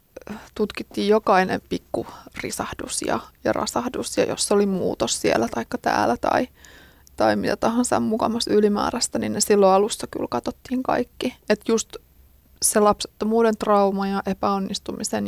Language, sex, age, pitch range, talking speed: Finnish, female, 20-39, 195-230 Hz, 140 wpm